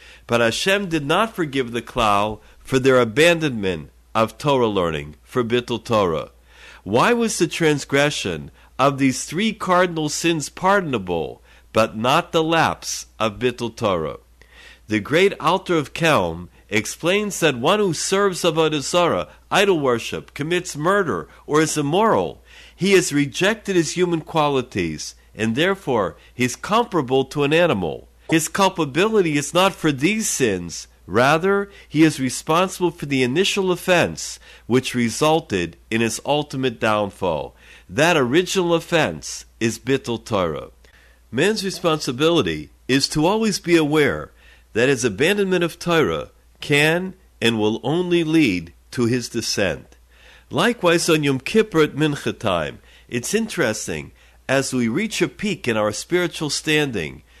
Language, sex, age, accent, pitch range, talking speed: English, male, 50-69, American, 115-175 Hz, 135 wpm